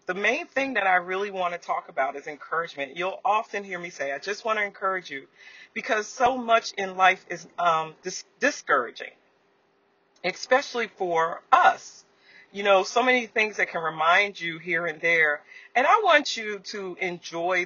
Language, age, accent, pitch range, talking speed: English, 40-59, American, 180-255 Hz, 175 wpm